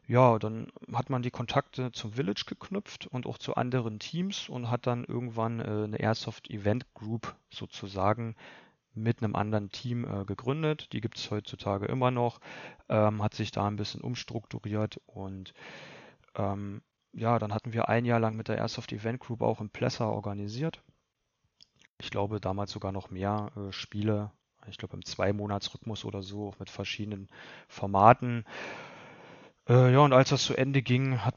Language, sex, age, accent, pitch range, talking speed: German, male, 30-49, German, 105-120 Hz, 160 wpm